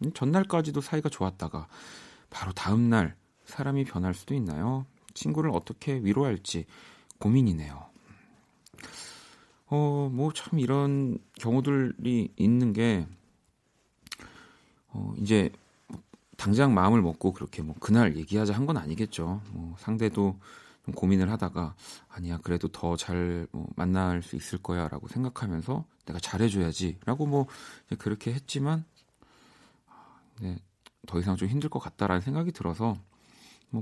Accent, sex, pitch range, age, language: native, male, 90-130 Hz, 40-59, Korean